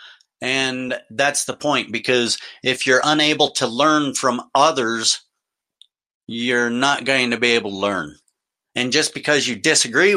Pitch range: 115-140 Hz